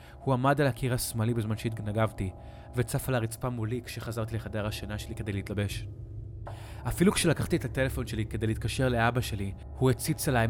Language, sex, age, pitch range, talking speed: Hebrew, male, 20-39, 110-125 Hz, 165 wpm